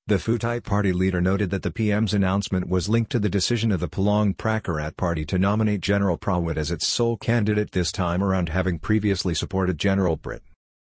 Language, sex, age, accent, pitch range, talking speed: English, male, 50-69, American, 90-105 Hz, 195 wpm